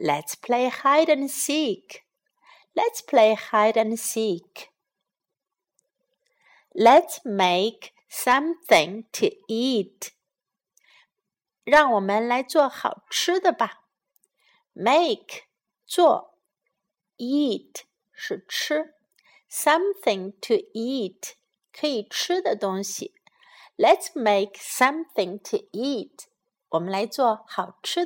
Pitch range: 200-295 Hz